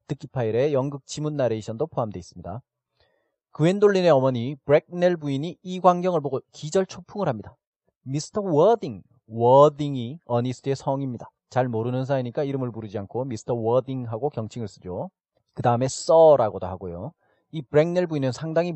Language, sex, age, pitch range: Korean, male, 30-49, 115-155 Hz